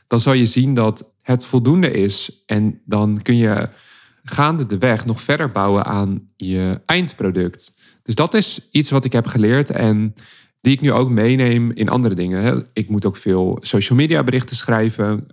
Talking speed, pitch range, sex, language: 180 wpm, 105-130 Hz, male, Dutch